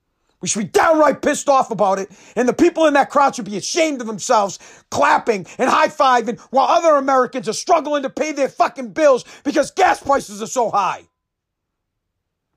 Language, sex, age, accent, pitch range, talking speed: English, male, 40-59, American, 210-285 Hz, 180 wpm